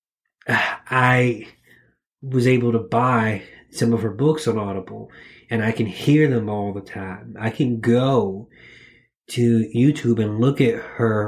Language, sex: English, male